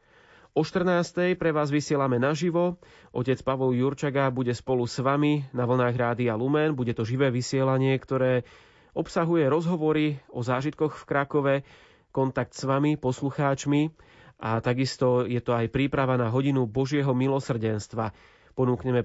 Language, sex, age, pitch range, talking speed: Slovak, male, 30-49, 120-150 Hz, 140 wpm